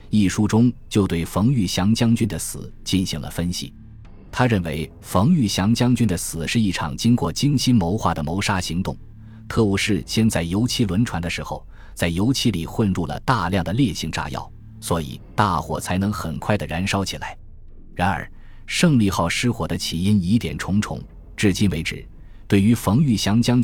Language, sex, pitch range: Chinese, male, 85-110 Hz